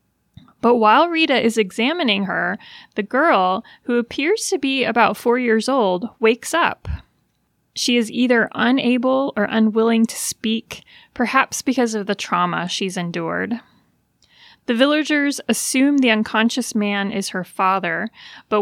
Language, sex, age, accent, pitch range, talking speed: English, female, 30-49, American, 205-255 Hz, 140 wpm